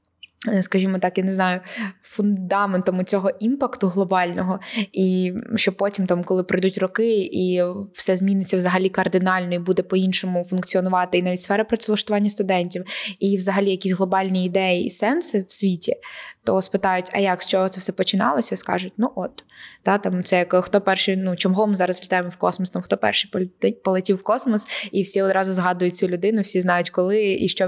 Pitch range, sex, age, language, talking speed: 185-235 Hz, female, 20-39, Ukrainian, 175 wpm